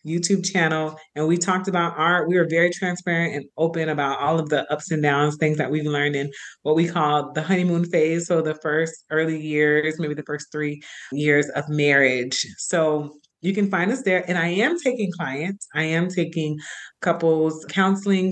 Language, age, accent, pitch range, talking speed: English, 30-49, American, 150-180 Hz, 195 wpm